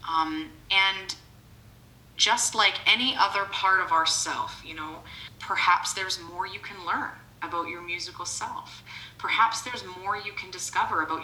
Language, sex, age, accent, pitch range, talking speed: English, female, 30-49, American, 165-235 Hz, 150 wpm